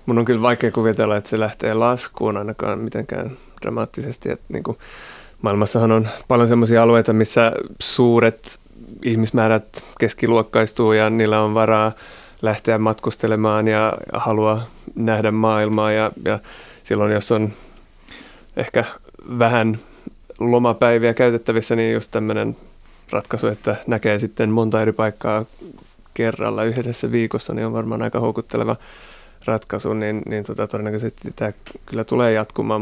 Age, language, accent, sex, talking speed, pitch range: 30-49, Finnish, native, male, 120 wpm, 110-115 Hz